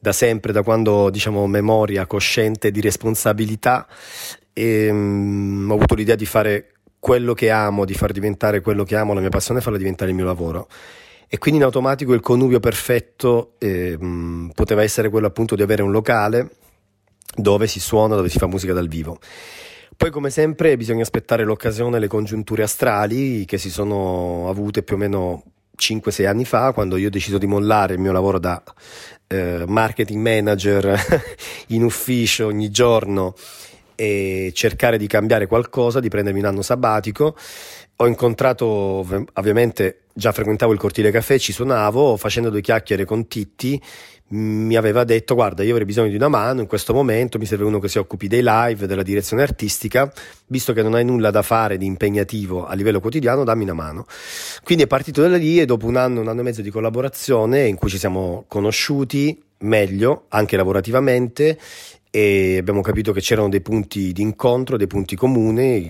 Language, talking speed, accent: Italian, 175 wpm, native